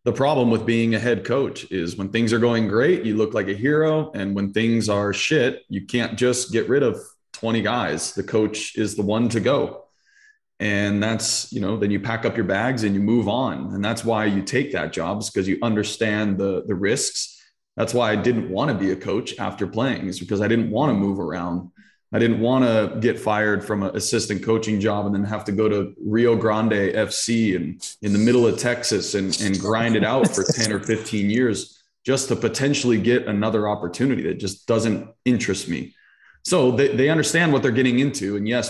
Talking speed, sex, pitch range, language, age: 220 wpm, male, 105-120 Hz, English, 20-39